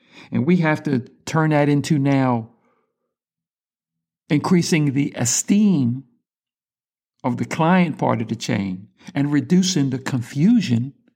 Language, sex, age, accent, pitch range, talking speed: English, male, 60-79, American, 125-160 Hz, 120 wpm